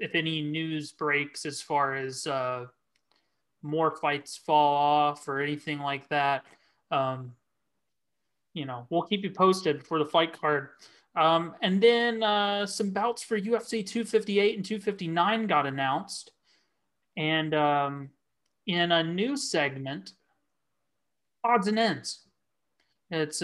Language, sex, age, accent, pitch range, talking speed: English, male, 30-49, American, 150-190 Hz, 130 wpm